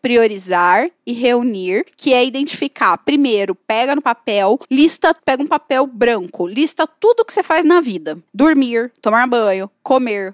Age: 20-39